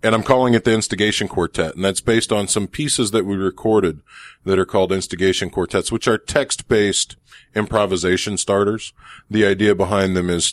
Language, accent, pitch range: English, American, 85-110 Hz